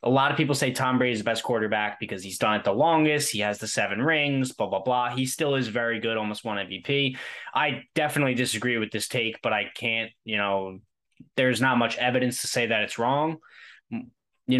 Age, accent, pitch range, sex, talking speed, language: 10-29, American, 110-130 Hz, male, 220 wpm, English